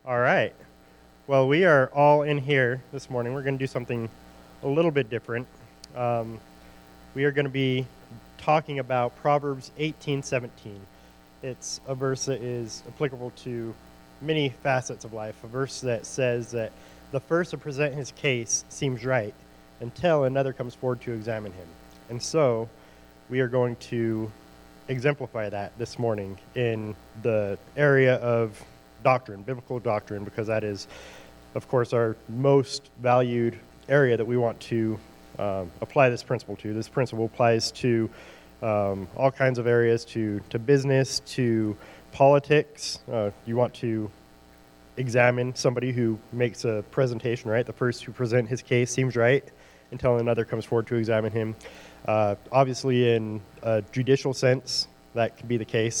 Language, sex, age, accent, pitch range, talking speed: English, male, 20-39, American, 105-130 Hz, 160 wpm